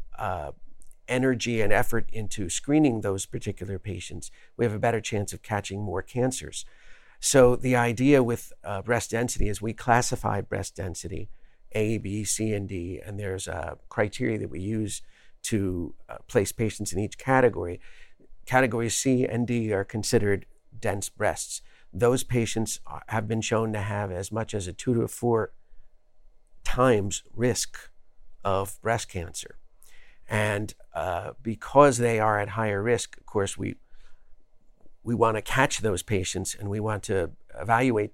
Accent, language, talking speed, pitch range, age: American, English, 155 wpm, 100-115 Hz, 50-69